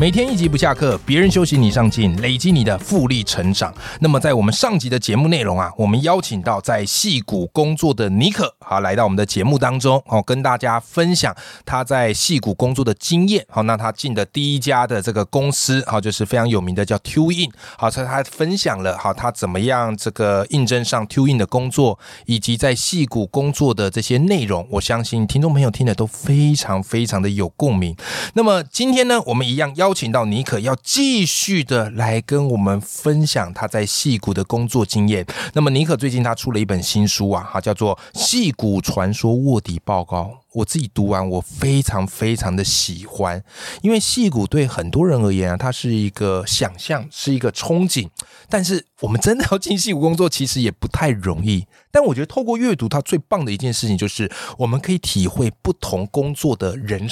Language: Chinese